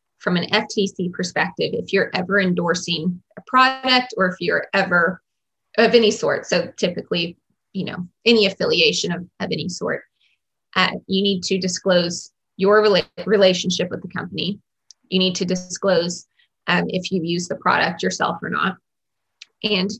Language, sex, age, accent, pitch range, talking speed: English, female, 20-39, American, 180-210 Hz, 155 wpm